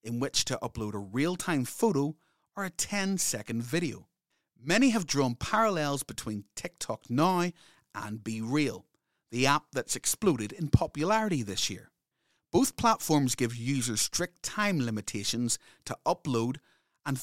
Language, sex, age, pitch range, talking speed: English, male, 30-49, 120-180 Hz, 135 wpm